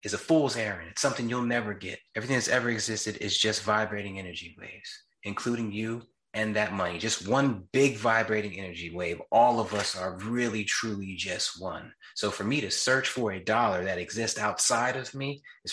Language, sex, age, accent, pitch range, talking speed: English, male, 30-49, American, 105-120 Hz, 195 wpm